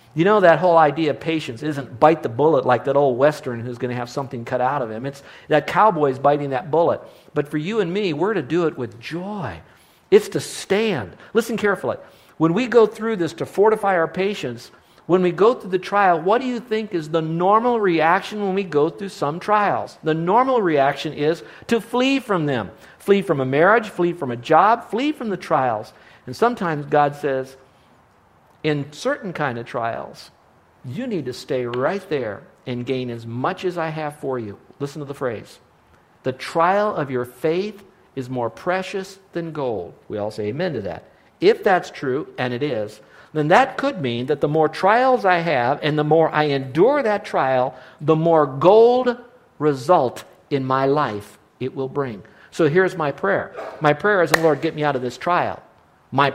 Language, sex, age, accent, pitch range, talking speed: English, male, 50-69, American, 135-195 Hz, 200 wpm